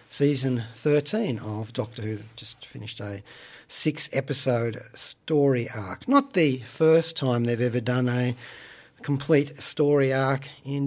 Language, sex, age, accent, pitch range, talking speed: English, male, 40-59, Australian, 120-160 Hz, 125 wpm